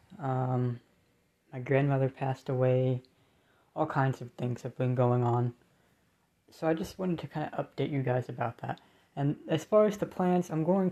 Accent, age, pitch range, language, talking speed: American, 20-39, 125-155 Hz, English, 180 wpm